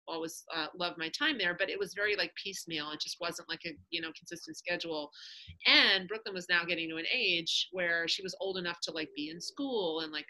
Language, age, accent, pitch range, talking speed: English, 30-49, American, 170-235 Hz, 240 wpm